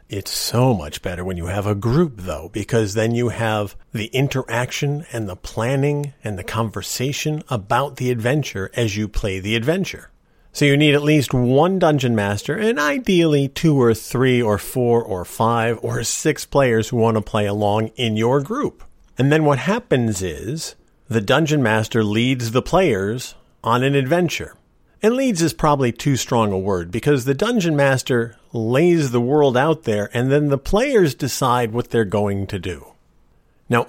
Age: 50-69